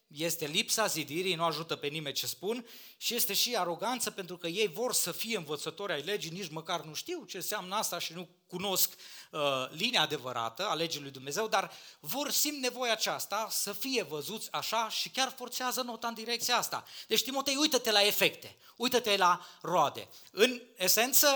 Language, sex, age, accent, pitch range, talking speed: Romanian, male, 30-49, native, 155-225 Hz, 185 wpm